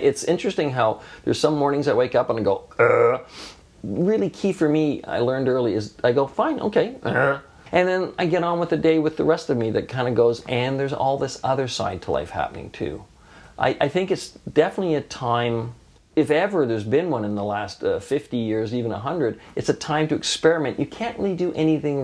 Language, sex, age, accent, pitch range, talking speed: English, male, 40-59, American, 120-165 Hz, 225 wpm